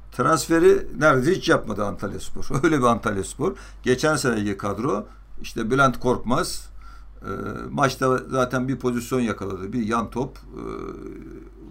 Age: 60-79